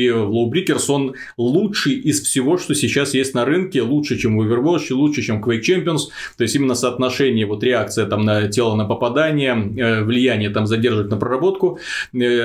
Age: 30-49